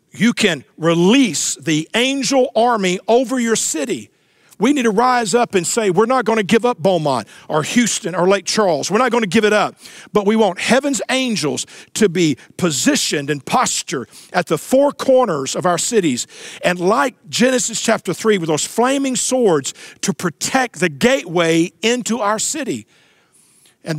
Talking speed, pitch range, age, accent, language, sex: 170 wpm, 170-235 Hz, 50-69, American, English, male